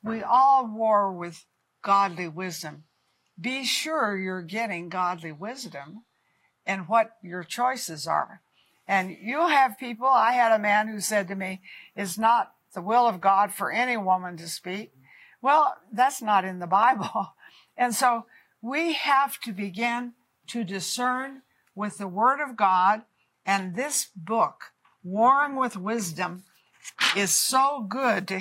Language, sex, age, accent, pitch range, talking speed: English, female, 60-79, American, 195-245 Hz, 145 wpm